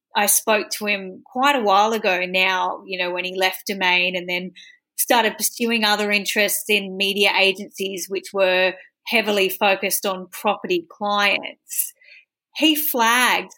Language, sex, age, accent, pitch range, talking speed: English, female, 30-49, Australian, 190-230 Hz, 145 wpm